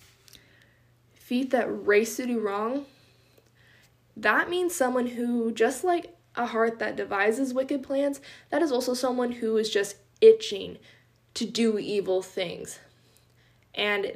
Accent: American